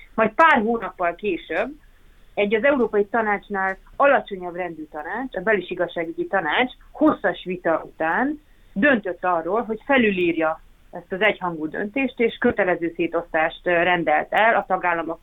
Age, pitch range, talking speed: 30-49, 180-240 Hz, 130 wpm